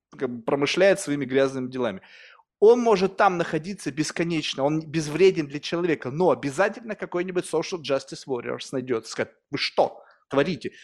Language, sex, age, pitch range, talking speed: Russian, male, 30-49, 155-195 Hz, 135 wpm